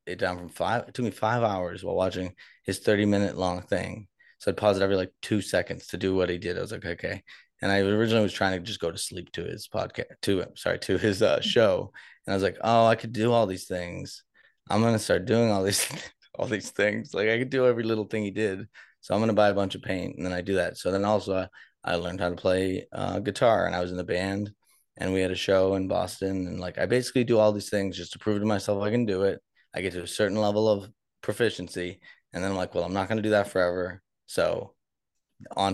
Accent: American